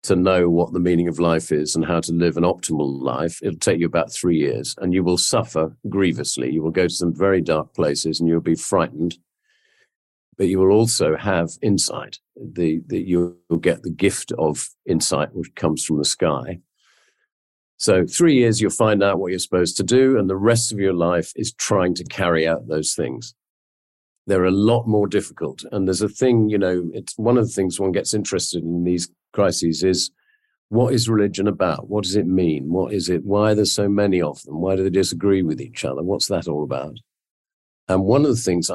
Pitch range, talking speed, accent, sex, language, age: 85-105 Hz, 215 wpm, British, male, English, 50-69